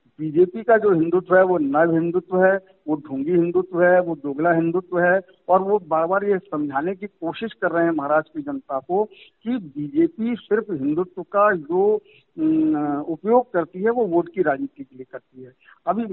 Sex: male